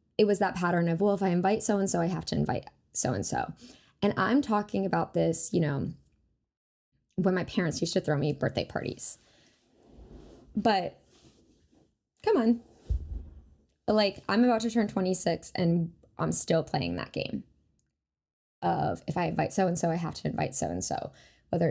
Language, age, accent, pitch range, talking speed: English, 10-29, American, 165-220 Hz, 160 wpm